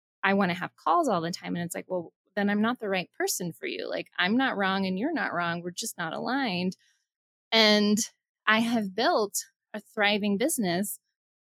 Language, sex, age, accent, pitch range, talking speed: English, female, 20-39, American, 180-225 Hz, 205 wpm